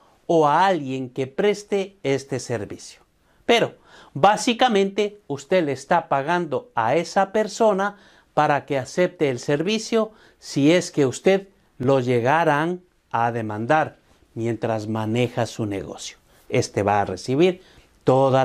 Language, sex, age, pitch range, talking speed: Spanish, male, 50-69, 135-200 Hz, 125 wpm